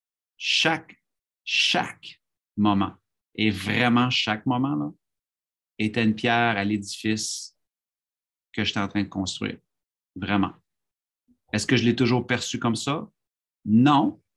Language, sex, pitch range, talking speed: French, male, 105-130 Hz, 115 wpm